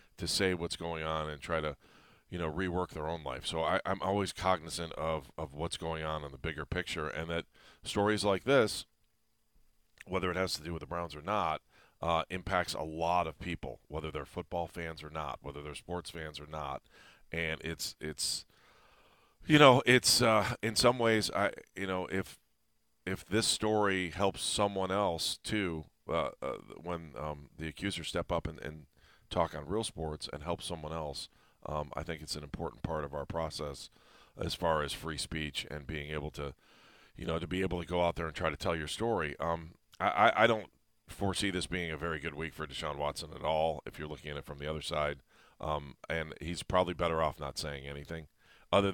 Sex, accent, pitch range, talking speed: male, American, 75-90 Hz, 205 wpm